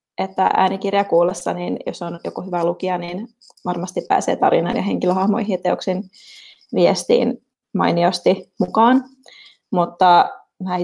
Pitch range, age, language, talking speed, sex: 175-195 Hz, 20-39, Finnish, 115 wpm, female